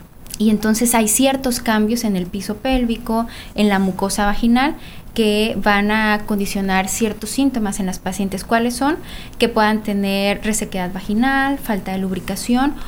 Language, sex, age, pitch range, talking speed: Spanish, female, 20-39, 195-235 Hz, 150 wpm